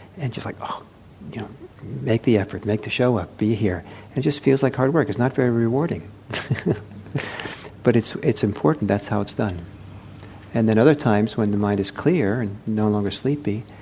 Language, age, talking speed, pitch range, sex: English, 50-69, 200 wpm, 100-115 Hz, male